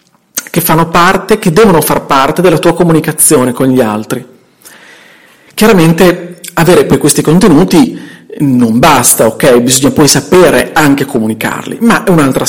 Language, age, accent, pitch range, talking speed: Italian, 40-59, native, 140-175 Hz, 140 wpm